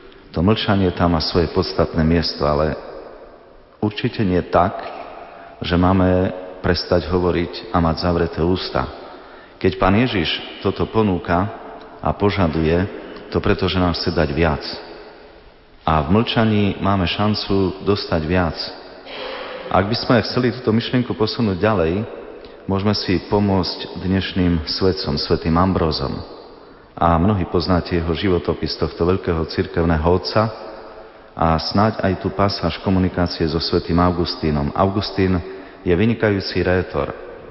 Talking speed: 125 wpm